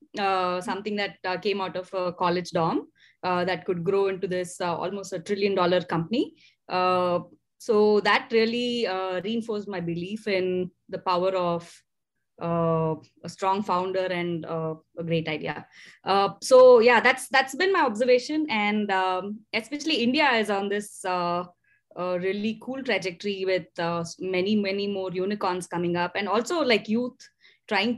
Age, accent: 20-39, Indian